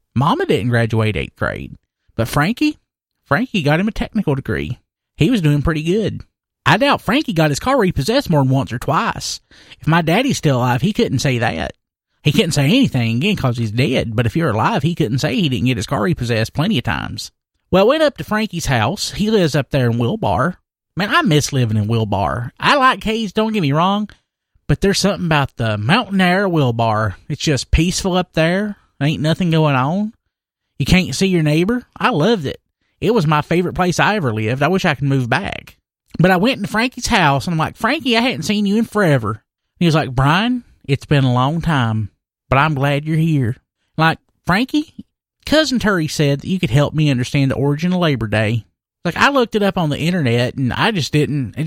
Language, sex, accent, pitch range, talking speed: English, male, American, 125-190 Hz, 215 wpm